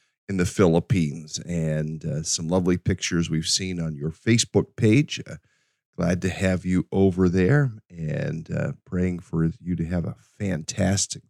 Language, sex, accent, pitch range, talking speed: English, male, American, 80-105 Hz, 160 wpm